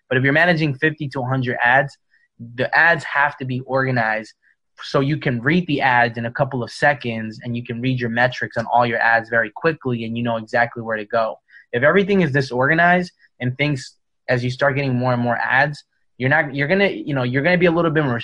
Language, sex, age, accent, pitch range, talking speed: English, male, 20-39, American, 125-150 Hz, 235 wpm